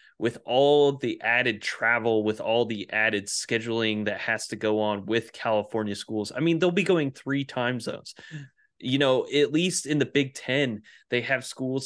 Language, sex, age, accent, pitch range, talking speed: English, male, 30-49, American, 110-135 Hz, 185 wpm